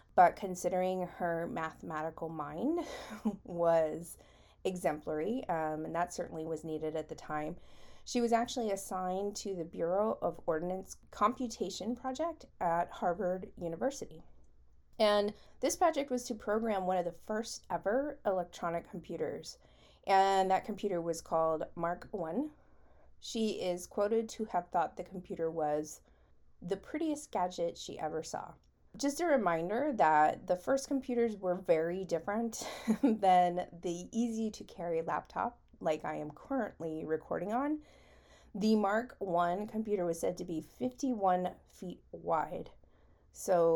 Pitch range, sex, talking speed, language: 165-220 Hz, female, 135 wpm, English